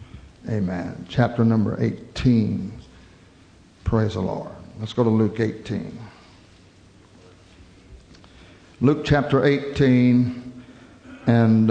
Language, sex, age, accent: English, male, 60-79, American